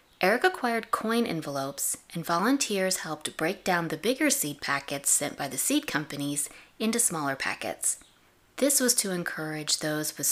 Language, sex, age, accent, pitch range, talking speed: English, female, 20-39, American, 145-220 Hz, 155 wpm